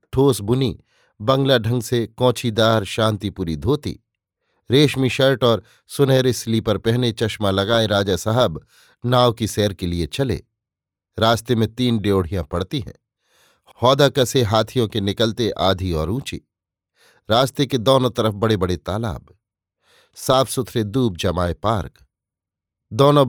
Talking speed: 130 wpm